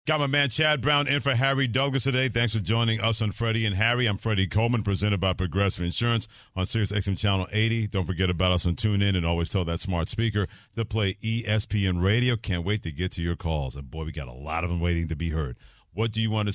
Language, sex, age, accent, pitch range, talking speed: English, male, 50-69, American, 85-110 Hz, 255 wpm